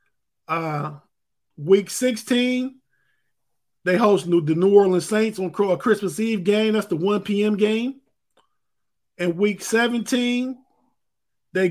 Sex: male